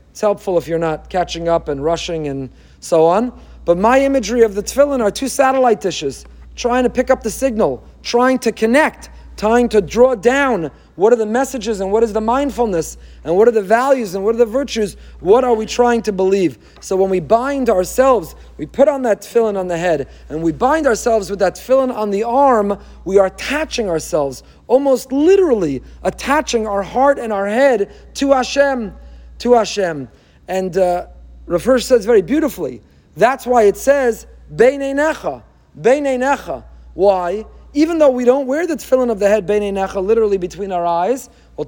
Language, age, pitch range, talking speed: English, 40-59, 190-260 Hz, 185 wpm